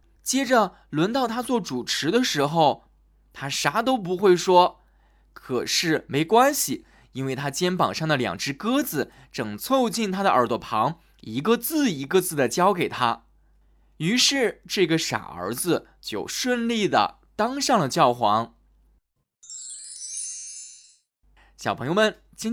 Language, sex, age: Chinese, male, 20-39